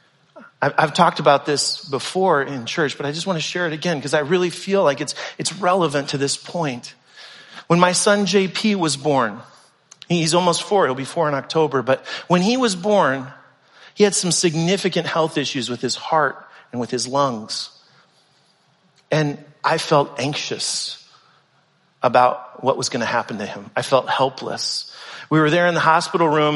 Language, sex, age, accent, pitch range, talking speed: English, male, 40-59, American, 145-180 Hz, 180 wpm